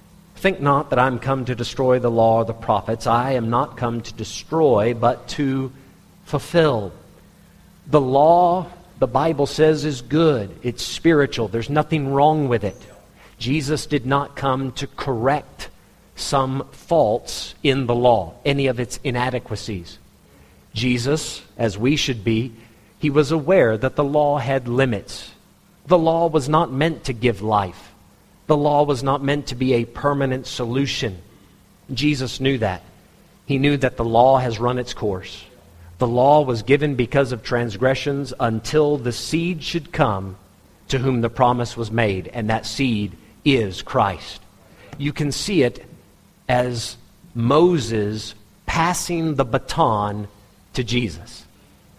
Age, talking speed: 50-69, 150 wpm